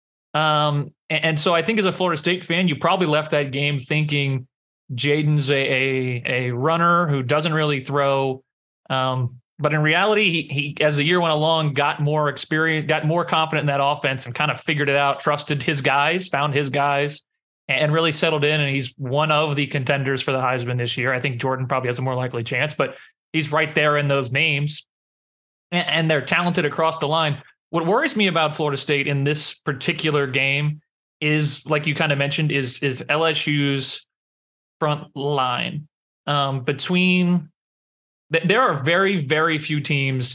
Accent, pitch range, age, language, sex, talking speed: American, 135-155 Hz, 30-49, English, male, 185 wpm